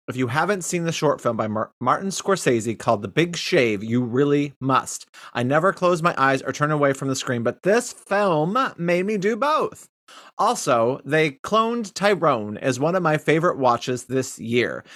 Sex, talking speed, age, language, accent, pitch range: male, 190 wpm, 30-49, English, American, 125-180 Hz